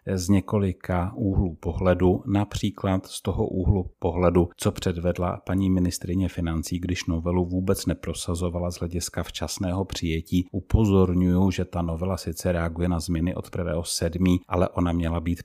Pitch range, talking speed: 85-95 Hz, 145 wpm